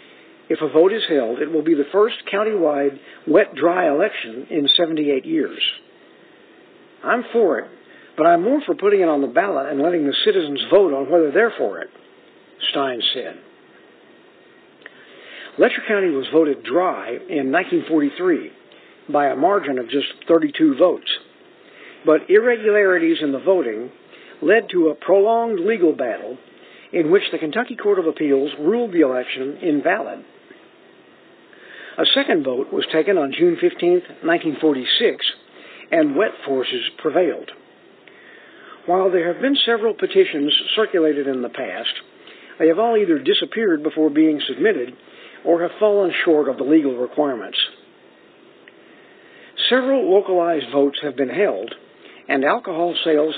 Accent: American